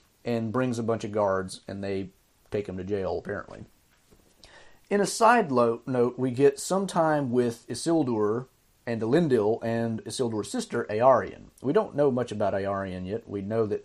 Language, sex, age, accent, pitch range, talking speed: English, male, 30-49, American, 105-125 Hz, 175 wpm